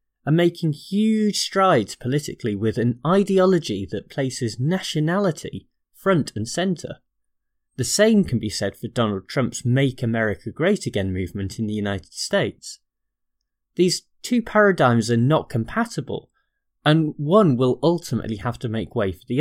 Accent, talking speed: British, 145 wpm